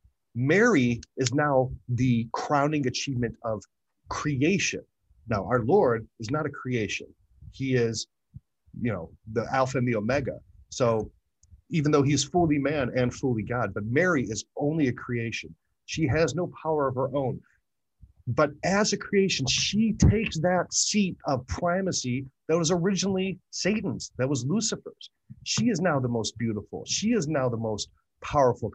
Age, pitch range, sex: 40-59, 115-165 Hz, male